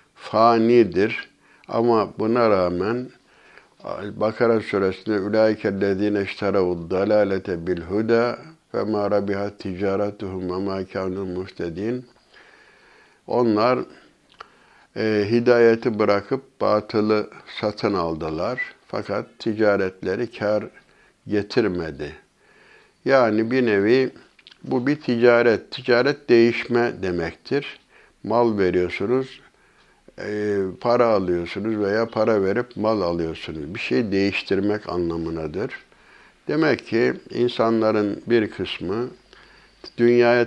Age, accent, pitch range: 60-79, native, 95-115 Hz